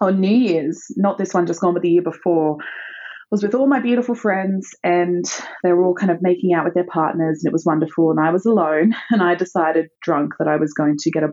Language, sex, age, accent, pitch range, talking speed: English, female, 20-39, Australian, 155-215 Hz, 255 wpm